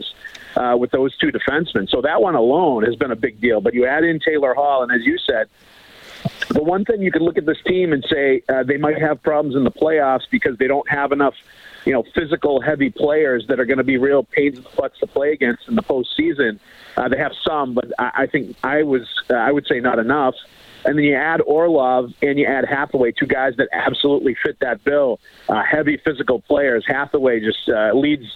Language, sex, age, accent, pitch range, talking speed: English, male, 50-69, American, 125-155 Hz, 230 wpm